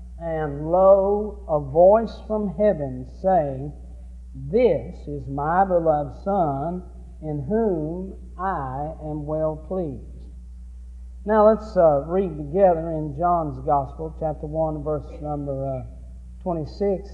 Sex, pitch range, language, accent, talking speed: male, 145-190 Hz, English, American, 110 wpm